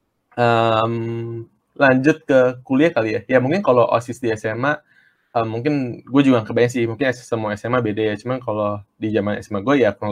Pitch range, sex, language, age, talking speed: 105-130 Hz, male, Indonesian, 20-39, 185 wpm